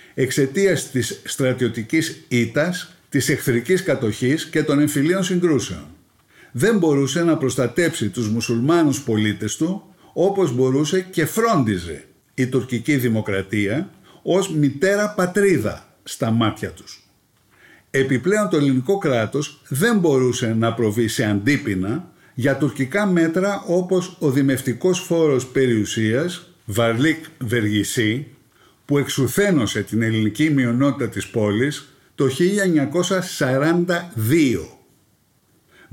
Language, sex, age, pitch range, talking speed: Greek, male, 50-69, 115-165 Hz, 100 wpm